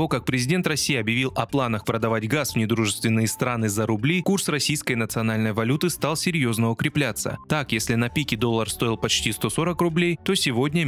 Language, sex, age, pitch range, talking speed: Russian, male, 20-39, 115-160 Hz, 175 wpm